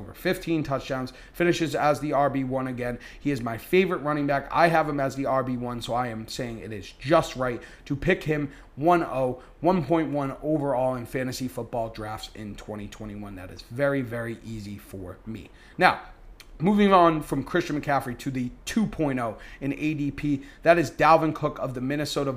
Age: 30-49